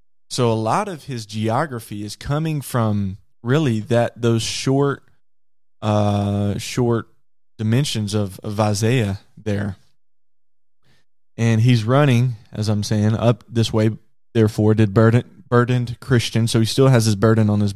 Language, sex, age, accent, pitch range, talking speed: English, male, 20-39, American, 110-130 Hz, 140 wpm